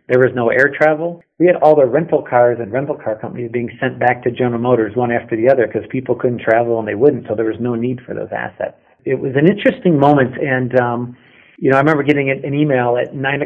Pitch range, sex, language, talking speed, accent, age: 115-135 Hz, male, English, 250 wpm, American, 50-69